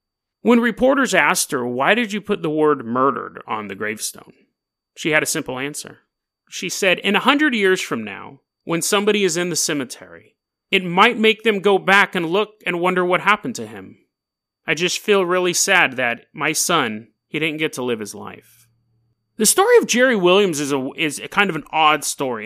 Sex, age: male, 30-49